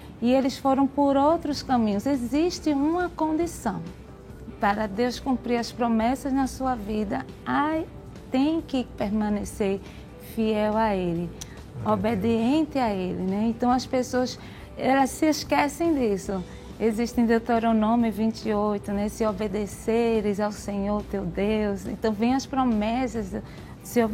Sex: female